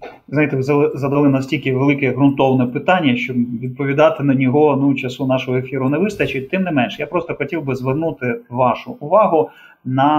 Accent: native